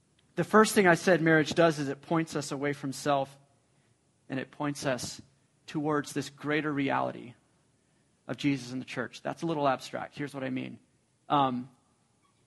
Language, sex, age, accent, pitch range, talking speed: English, male, 30-49, American, 140-165 Hz, 175 wpm